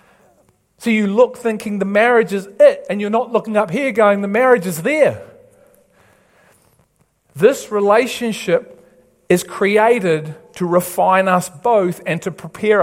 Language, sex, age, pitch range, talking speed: English, male, 50-69, 140-195 Hz, 140 wpm